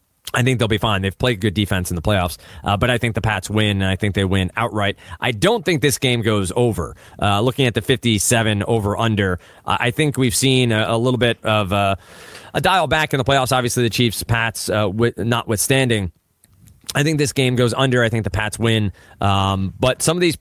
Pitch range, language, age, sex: 100-130 Hz, English, 30-49, male